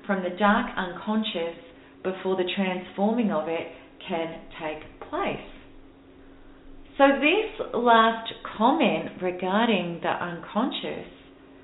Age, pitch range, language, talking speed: 40-59, 170-220 Hz, English, 100 wpm